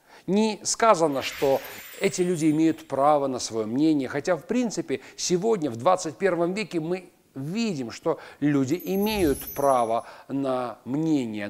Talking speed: 130 wpm